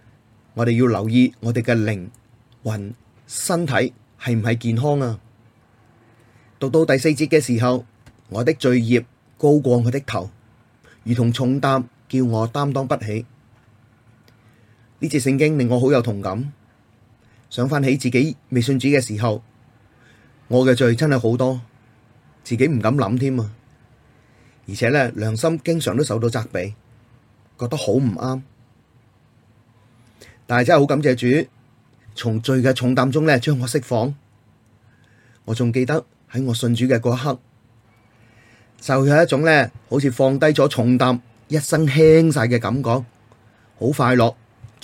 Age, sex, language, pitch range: 30-49, male, Chinese, 115-130 Hz